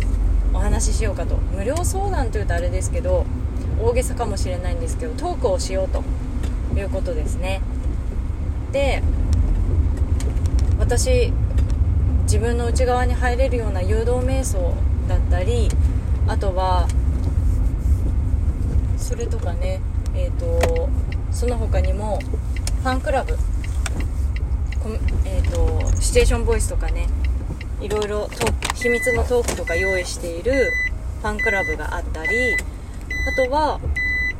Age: 20-39